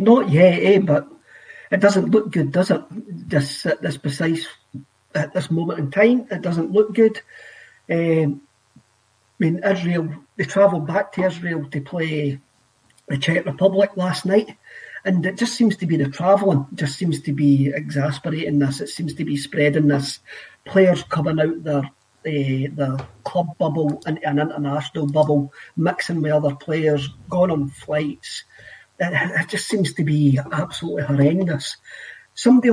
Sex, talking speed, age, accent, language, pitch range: male, 160 wpm, 40-59, British, English, 145-185 Hz